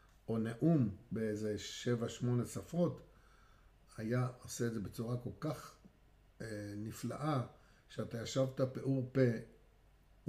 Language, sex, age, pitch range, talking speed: Hebrew, male, 50-69, 105-130 Hz, 110 wpm